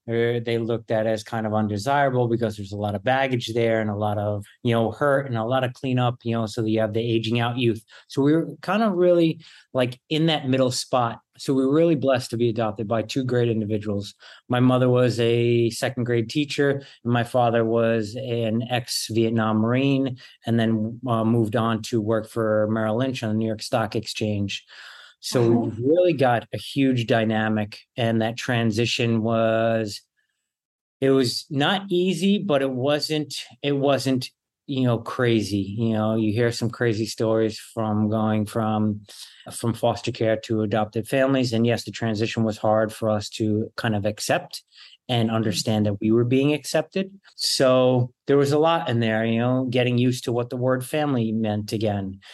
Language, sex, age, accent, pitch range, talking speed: English, male, 30-49, American, 110-130 Hz, 185 wpm